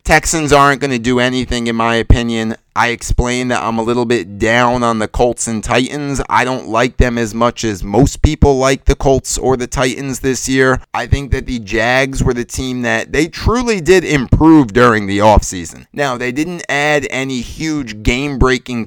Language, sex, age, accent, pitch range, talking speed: English, male, 30-49, American, 110-135 Hz, 195 wpm